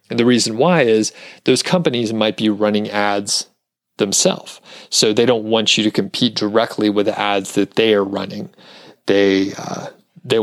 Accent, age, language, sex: American, 30-49, English, male